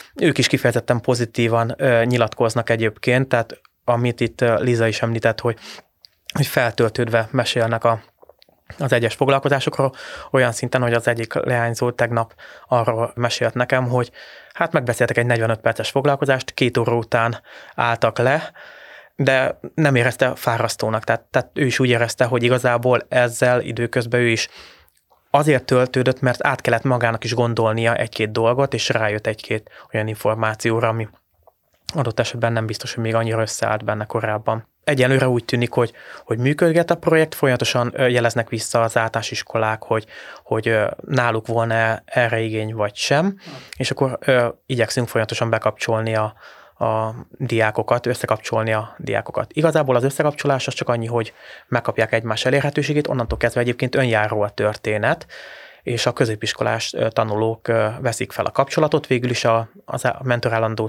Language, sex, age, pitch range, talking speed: Hungarian, male, 20-39, 115-125 Hz, 145 wpm